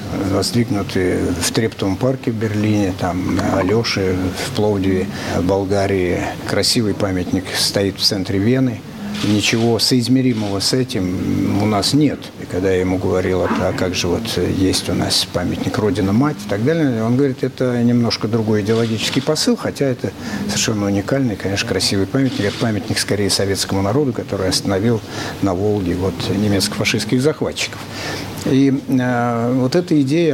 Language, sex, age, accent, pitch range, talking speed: Russian, male, 60-79, native, 95-125 Hz, 140 wpm